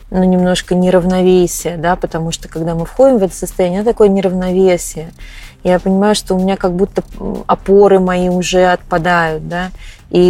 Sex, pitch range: female, 175-200 Hz